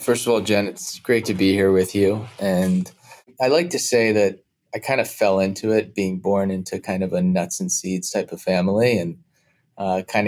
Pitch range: 95-120 Hz